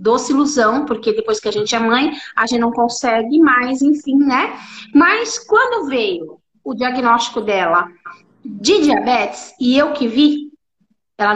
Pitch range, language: 230-325 Hz, Portuguese